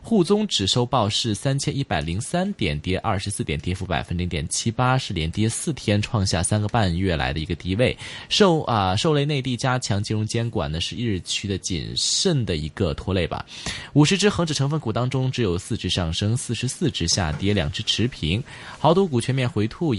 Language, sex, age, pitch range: Chinese, male, 20-39, 95-135 Hz